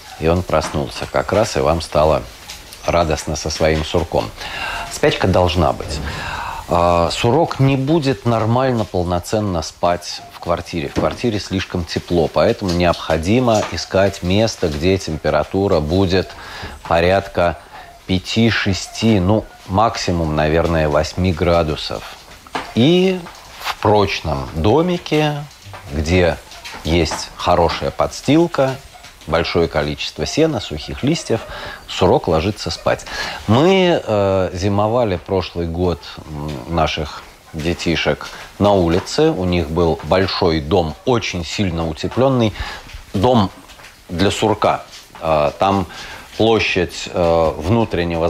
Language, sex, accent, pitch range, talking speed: Russian, male, native, 85-105 Hz, 100 wpm